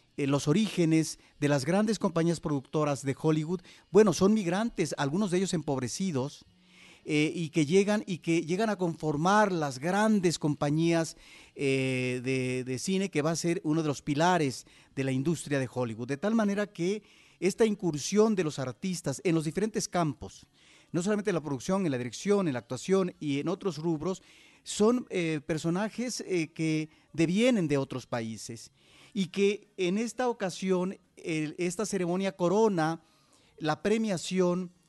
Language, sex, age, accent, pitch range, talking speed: Spanish, male, 40-59, Mexican, 145-190 Hz, 160 wpm